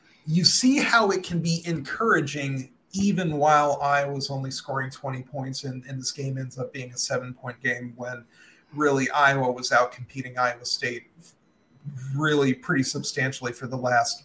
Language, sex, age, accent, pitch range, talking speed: English, male, 40-59, American, 130-150 Hz, 160 wpm